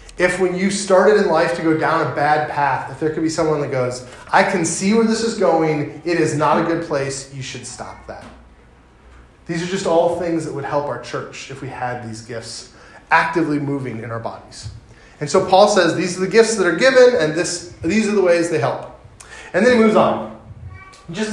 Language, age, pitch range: English, 30-49, 140-195 Hz